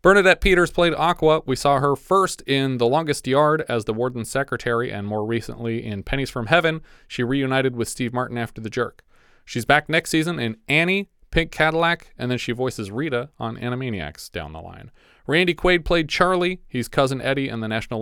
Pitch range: 115-155 Hz